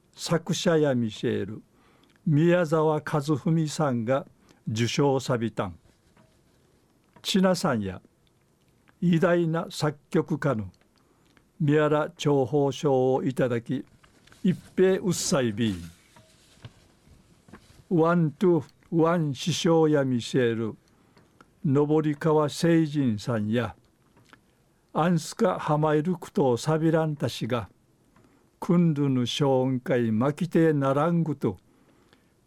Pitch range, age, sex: 125-165 Hz, 50-69, male